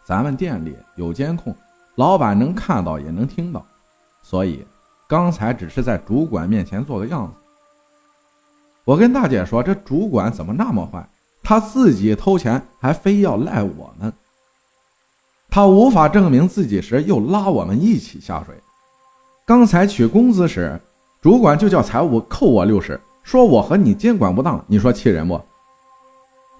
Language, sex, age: Chinese, male, 50-69